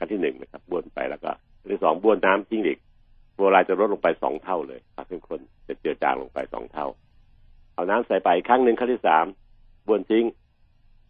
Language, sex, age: Thai, male, 60-79